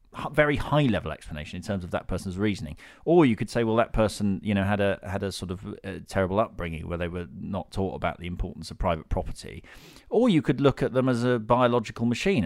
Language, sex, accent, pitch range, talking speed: English, male, British, 95-125 Hz, 220 wpm